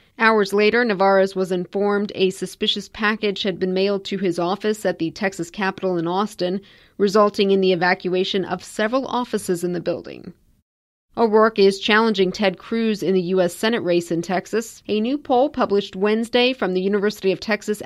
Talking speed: 175 wpm